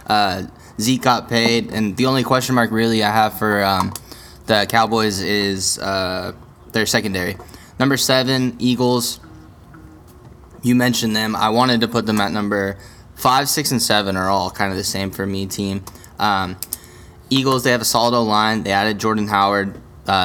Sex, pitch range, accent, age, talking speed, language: male, 100-120 Hz, American, 10-29, 170 wpm, English